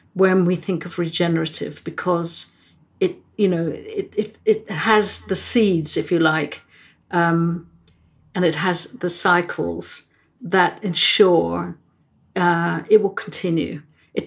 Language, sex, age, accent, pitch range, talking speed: English, female, 50-69, British, 170-195 Hz, 130 wpm